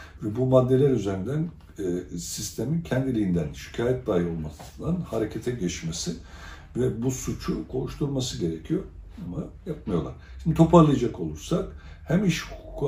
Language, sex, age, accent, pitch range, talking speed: Turkish, male, 60-79, native, 85-135 Hz, 115 wpm